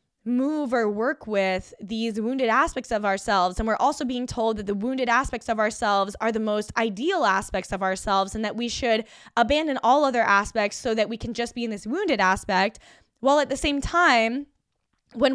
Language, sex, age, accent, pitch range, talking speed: English, female, 10-29, American, 210-265 Hz, 200 wpm